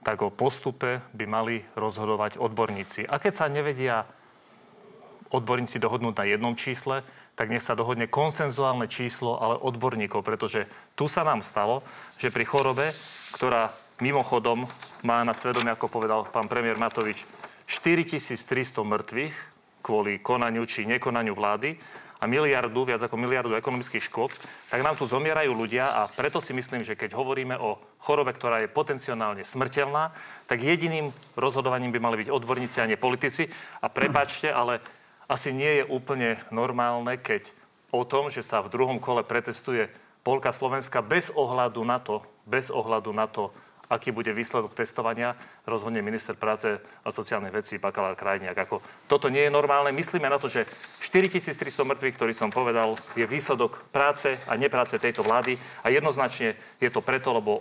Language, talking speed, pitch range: Slovak, 155 wpm, 115-140 Hz